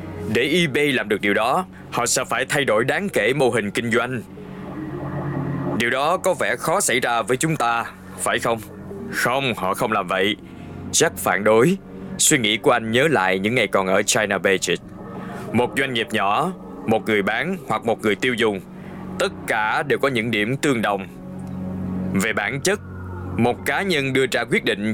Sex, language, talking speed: male, Vietnamese, 190 wpm